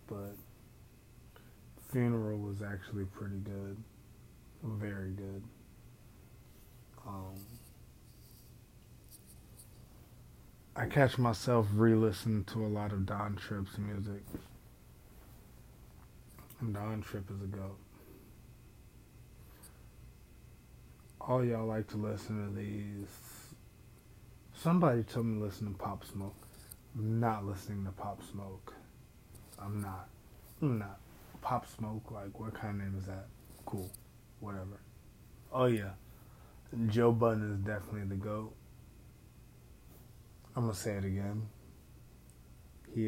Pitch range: 100-115 Hz